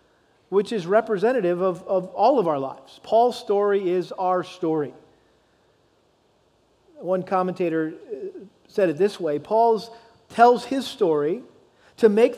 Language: English